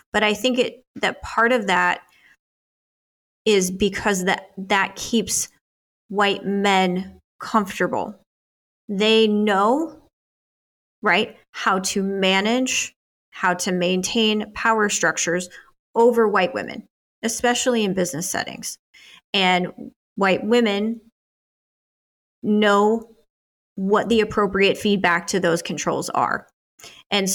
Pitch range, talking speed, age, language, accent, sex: 185-215 Hz, 105 wpm, 30-49, English, American, female